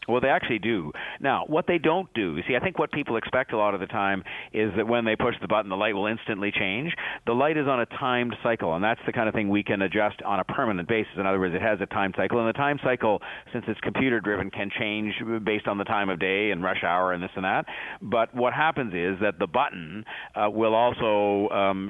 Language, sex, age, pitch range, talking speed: English, male, 50-69, 100-120 Hz, 260 wpm